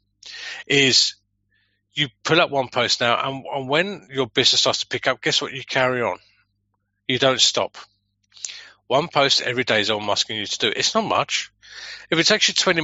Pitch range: 105-145 Hz